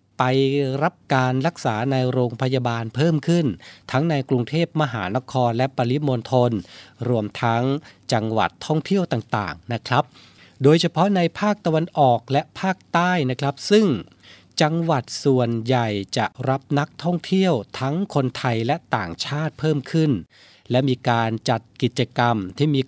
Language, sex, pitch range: Thai, male, 115-145 Hz